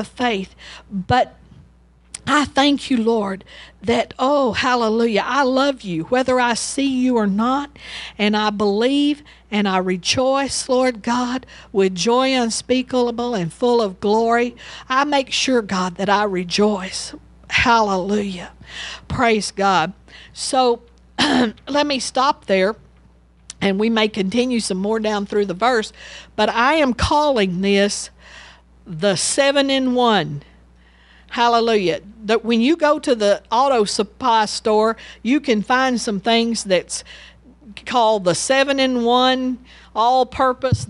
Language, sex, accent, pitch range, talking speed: English, female, American, 200-255 Hz, 125 wpm